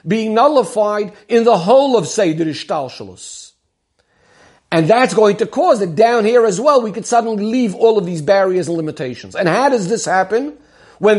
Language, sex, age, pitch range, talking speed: English, male, 50-69, 195-245 Hz, 180 wpm